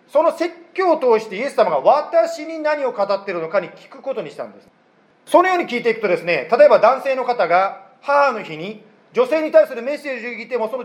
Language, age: Japanese, 40-59